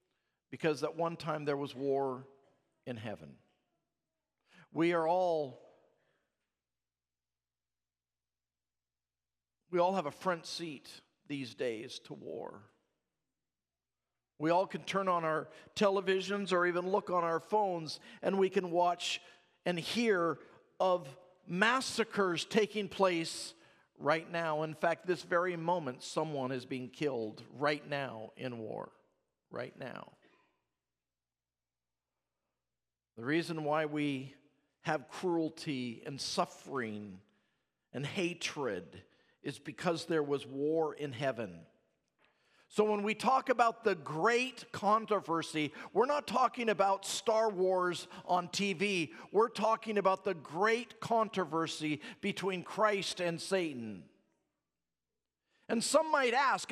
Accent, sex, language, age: American, male, English, 50-69